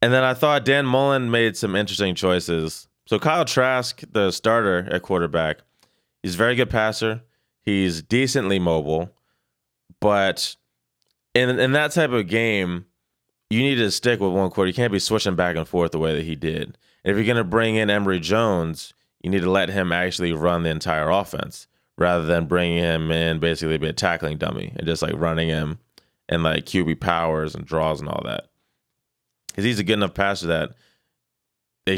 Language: English